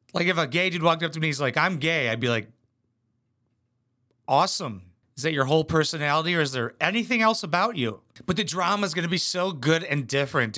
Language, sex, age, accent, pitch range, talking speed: English, male, 30-49, American, 125-190 Hz, 225 wpm